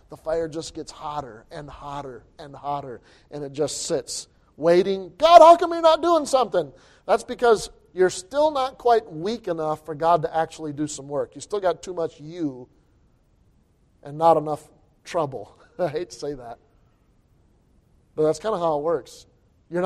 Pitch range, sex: 145-190 Hz, male